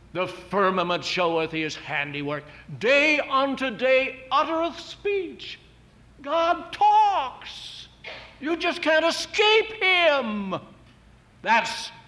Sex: male